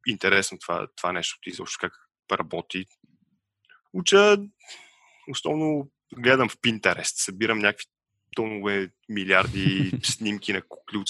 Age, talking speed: 20-39, 115 wpm